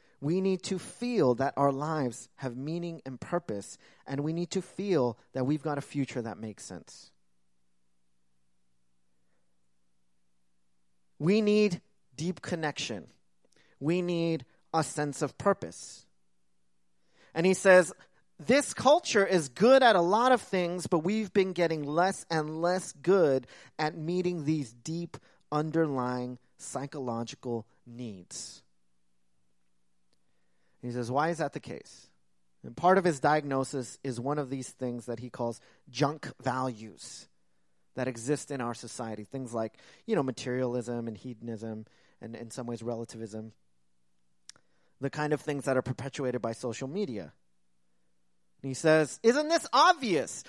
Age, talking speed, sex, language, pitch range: 30-49, 140 wpm, male, English, 115-170 Hz